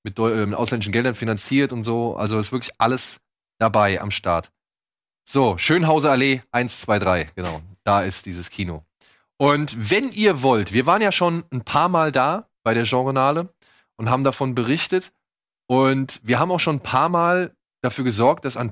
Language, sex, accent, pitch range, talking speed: German, male, German, 105-145 Hz, 180 wpm